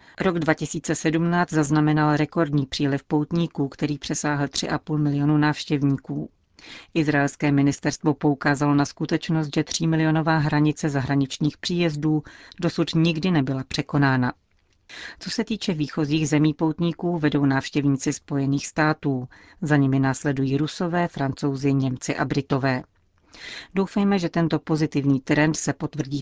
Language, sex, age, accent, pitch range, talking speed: Czech, female, 40-59, native, 140-160 Hz, 115 wpm